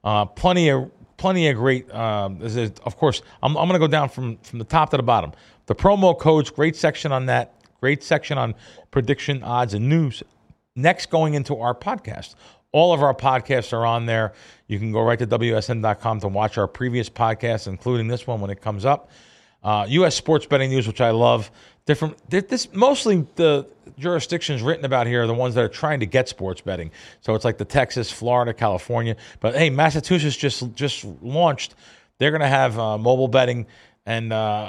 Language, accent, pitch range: English, American, 110-140 Hz